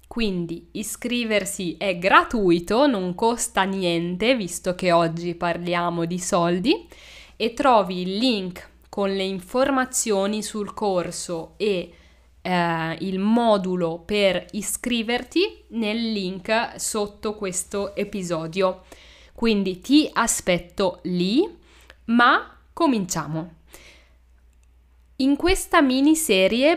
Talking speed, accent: 95 wpm, native